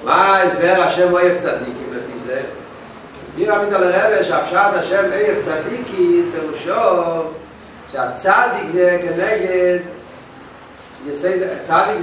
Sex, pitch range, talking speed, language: male, 155-195 Hz, 100 wpm, Hebrew